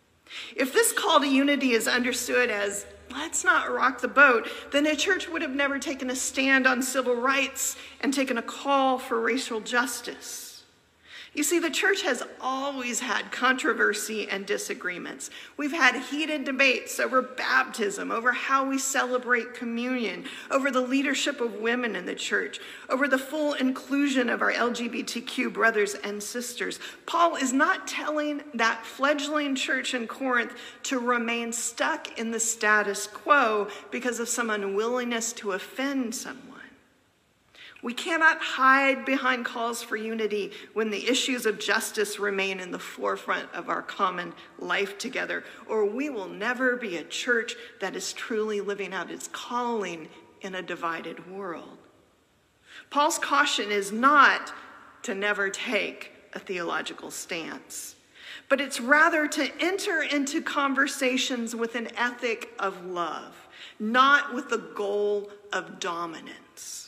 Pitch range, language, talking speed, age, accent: 225-280 Hz, English, 145 wpm, 40-59, American